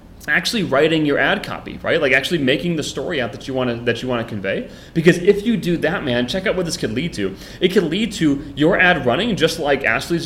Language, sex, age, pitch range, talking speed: English, male, 30-49, 115-165 Hz, 255 wpm